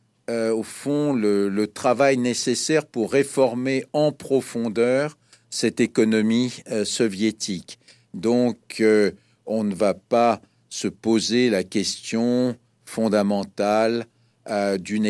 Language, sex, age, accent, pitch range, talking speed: French, male, 60-79, French, 105-125 Hz, 110 wpm